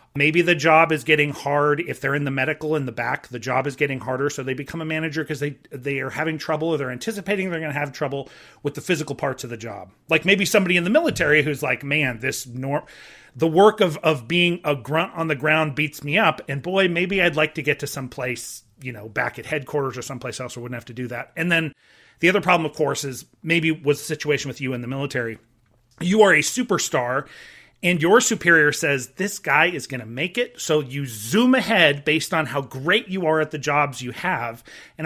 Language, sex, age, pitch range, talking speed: English, male, 30-49, 135-175 Hz, 240 wpm